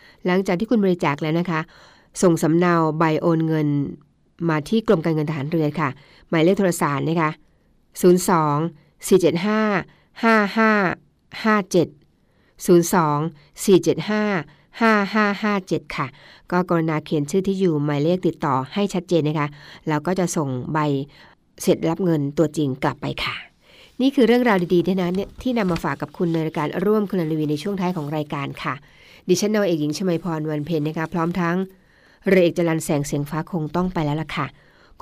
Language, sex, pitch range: Thai, female, 155-185 Hz